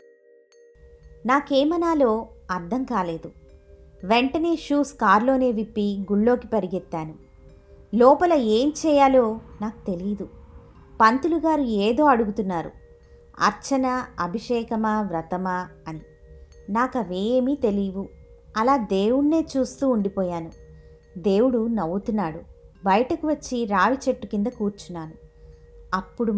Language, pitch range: Telugu, 185-265 Hz